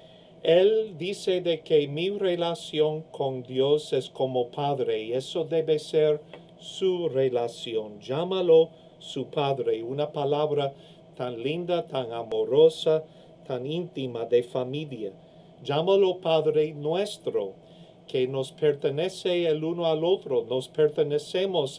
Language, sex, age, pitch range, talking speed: English, male, 50-69, 130-170 Hz, 115 wpm